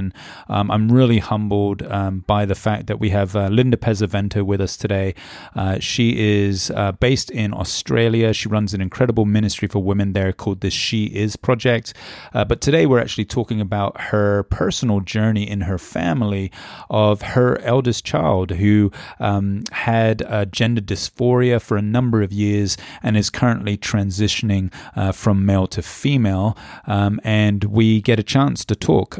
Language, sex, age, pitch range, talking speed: English, male, 30-49, 100-115 Hz, 170 wpm